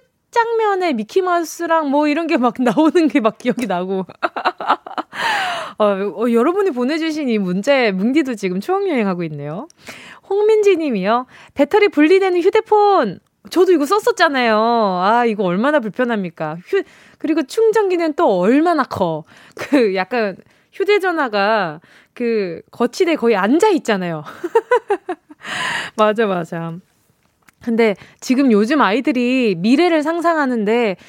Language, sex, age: Korean, female, 20-39